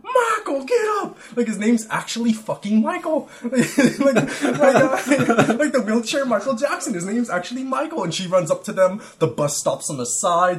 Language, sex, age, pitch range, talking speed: English, male, 20-39, 135-185 Hz, 185 wpm